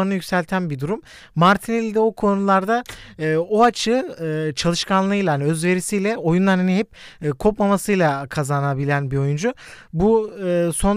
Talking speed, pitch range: 125 wpm, 155-195 Hz